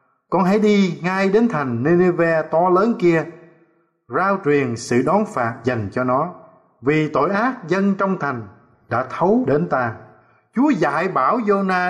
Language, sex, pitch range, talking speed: Vietnamese, male, 140-200 Hz, 160 wpm